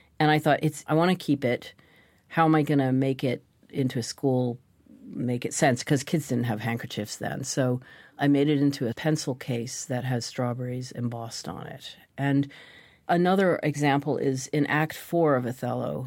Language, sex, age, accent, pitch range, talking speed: English, female, 40-59, American, 125-145 Hz, 190 wpm